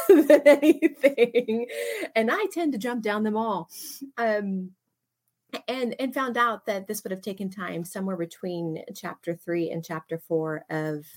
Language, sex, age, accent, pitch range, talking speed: English, female, 30-49, American, 165-205 Hz, 155 wpm